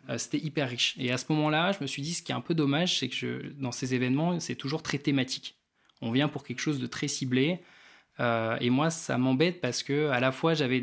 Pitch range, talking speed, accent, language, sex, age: 125-145 Hz, 255 wpm, French, French, male, 20-39